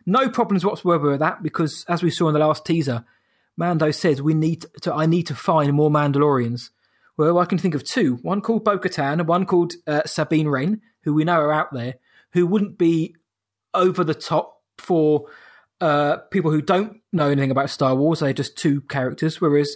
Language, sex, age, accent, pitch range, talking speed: English, male, 20-39, British, 150-180 Hz, 200 wpm